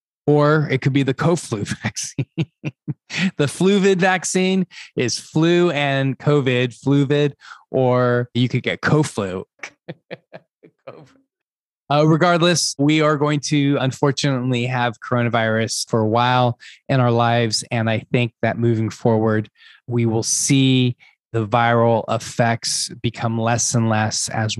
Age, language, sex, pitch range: 20-39, English, male, 110-135 Hz